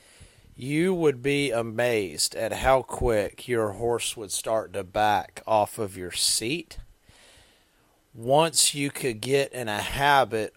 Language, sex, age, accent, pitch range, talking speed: English, male, 40-59, American, 105-130 Hz, 135 wpm